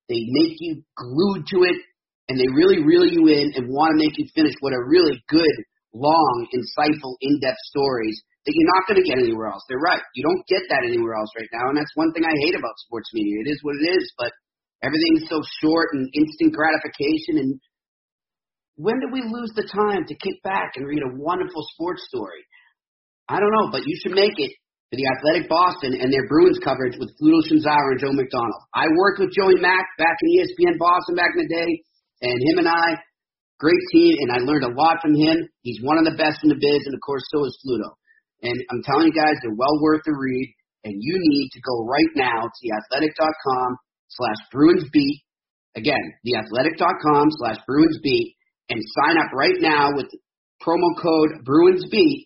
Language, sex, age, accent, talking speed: English, male, 40-59, American, 205 wpm